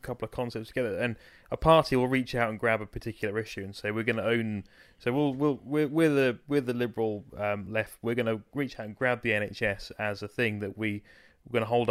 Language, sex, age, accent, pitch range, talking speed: English, male, 30-49, British, 110-125 Hz, 250 wpm